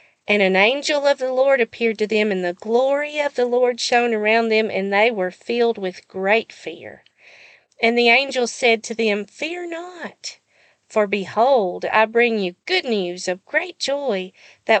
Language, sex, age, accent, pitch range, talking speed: English, female, 50-69, American, 205-245 Hz, 180 wpm